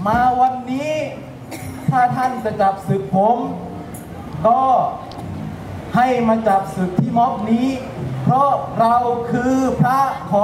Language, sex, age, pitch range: Thai, male, 20-39, 185-250 Hz